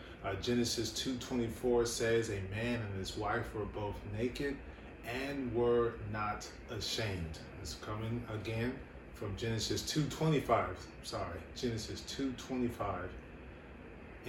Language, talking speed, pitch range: English, 105 wpm, 100-120 Hz